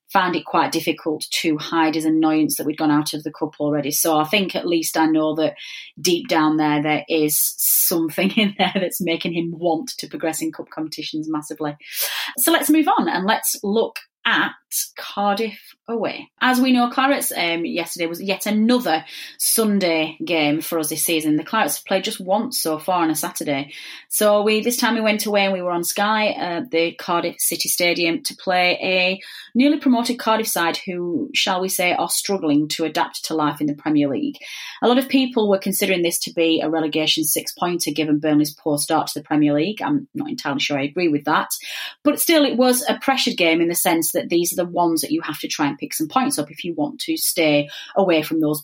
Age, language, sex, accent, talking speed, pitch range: 30-49, English, female, British, 220 wpm, 155-220 Hz